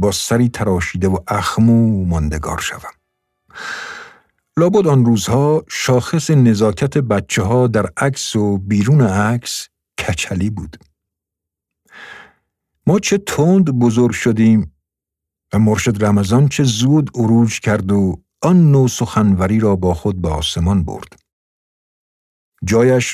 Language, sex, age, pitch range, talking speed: Persian, male, 50-69, 95-120 Hz, 115 wpm